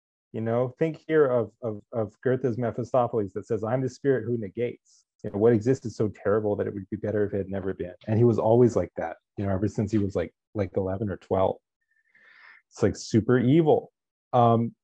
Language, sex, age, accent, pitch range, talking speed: English, male, 30-49, American, 105-130 Hz, 225 wpm